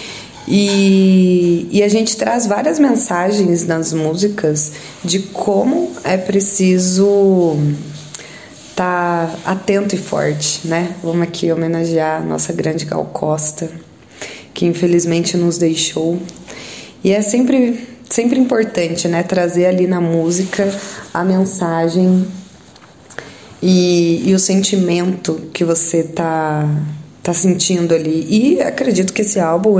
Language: Portuguese